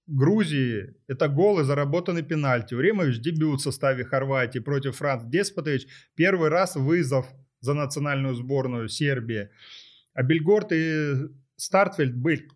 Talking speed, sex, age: 115 wpm, male, 30-49